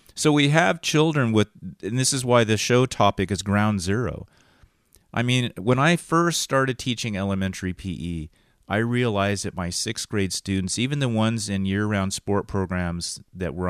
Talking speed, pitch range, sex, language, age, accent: 175 wpm, 85-110 Hz, male, English, 30-49, American